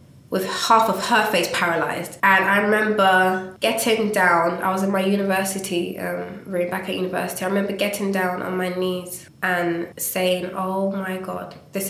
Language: English